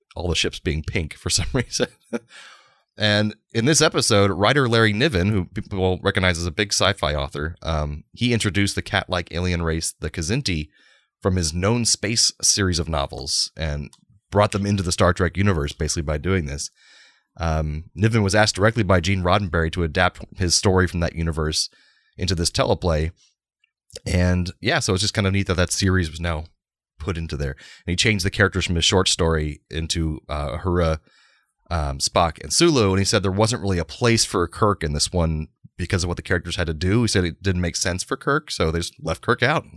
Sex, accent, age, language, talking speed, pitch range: male, American, 30-49, English, 205 wpm, 85-105 Hz